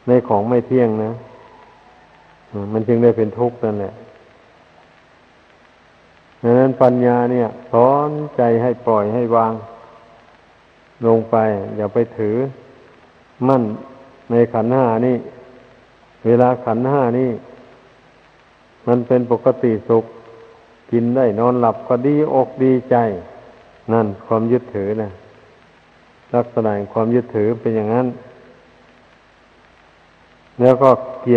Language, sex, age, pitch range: Thai, male, 60-79, 115-125 Hz